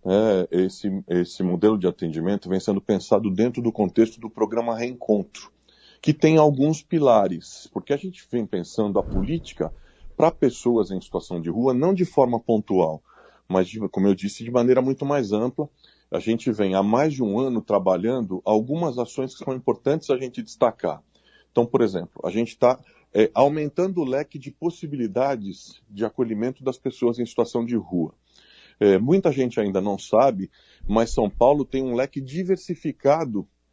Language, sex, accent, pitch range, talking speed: Portuguese, male, Brazilian, 100-140 Hz, 165 wpm